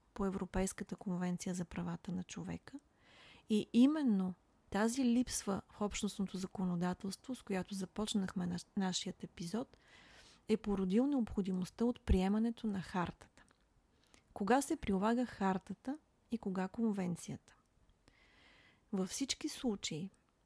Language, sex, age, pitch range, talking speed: Bulgarian, female, 30-49, 190-235 Hz, 105 wpm